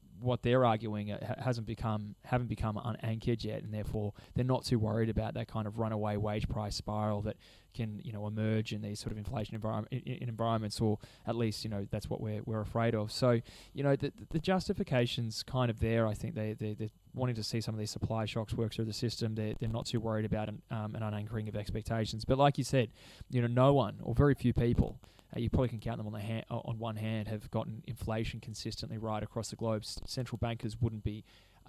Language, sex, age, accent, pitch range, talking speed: English, male, 20-39, Australian, 110-120 Hz, 235 wpm